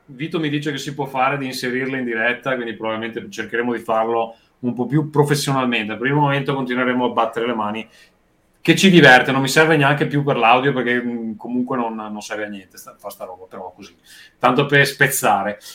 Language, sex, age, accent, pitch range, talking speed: Italian, male, 30-49, native, 115-145 Hz, 205 wpm